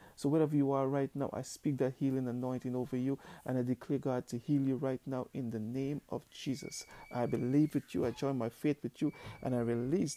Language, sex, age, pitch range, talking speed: English, male, 50-69, 120-140 Hz, 235 wpm